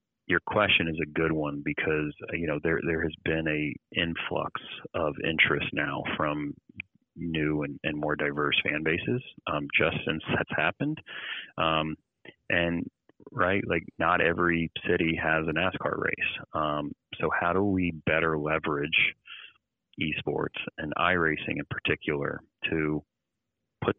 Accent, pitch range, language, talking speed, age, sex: American, 75-85 Hz, English, 140 wpm, 30-49, male